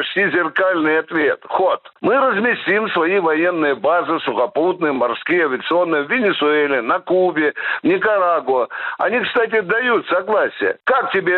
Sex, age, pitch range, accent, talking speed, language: male, 60-79, 175-235 Hz, native, 125 wpm, Russian